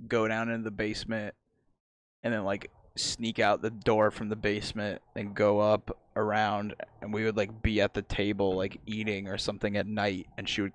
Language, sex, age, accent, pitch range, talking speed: English, male, 20-39, American, 105-115 Hz, 200 wpm